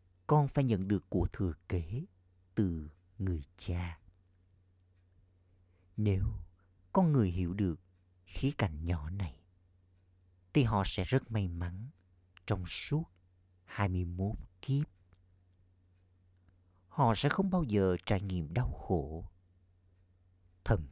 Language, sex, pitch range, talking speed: Vietnamese, male, 90-95 Hz, 110 wpm